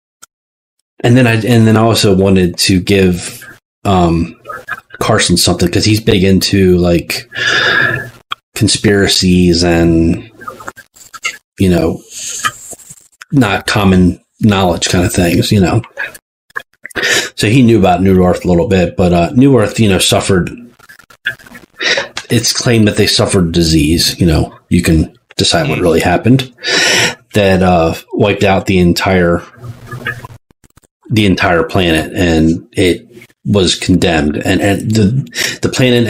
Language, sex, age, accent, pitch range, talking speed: English, male, 30-49, American, 90-110 Hz, 130 wpm